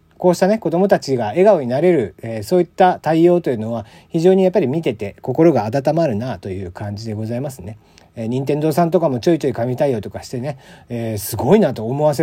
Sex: male